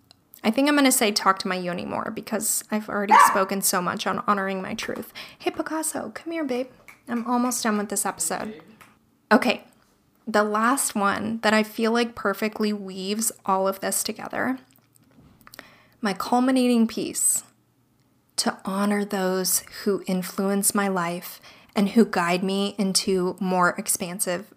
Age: 20-39